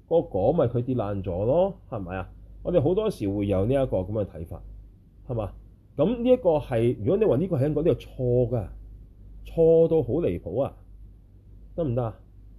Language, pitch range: Chinese, 95-120 Hz